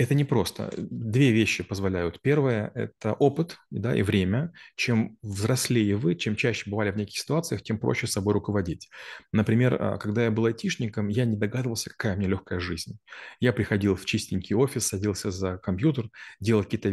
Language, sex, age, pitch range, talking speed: Russian, male, 30-49, 100-120 Hz, 165 wpm